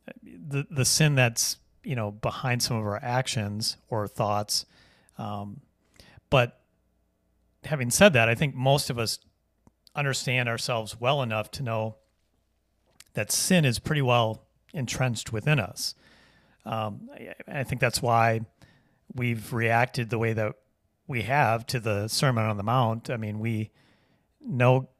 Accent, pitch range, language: American, 105-130 Hz, English